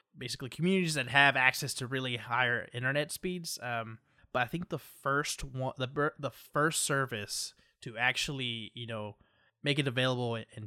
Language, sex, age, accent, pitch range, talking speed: English, male, 20-39, American, 120-150 Hz, 165 wpm